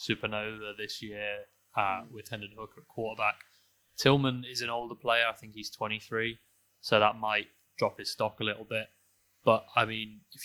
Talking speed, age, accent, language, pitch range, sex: 180 wpm, 20-39, British, English, 105-120 Hz, male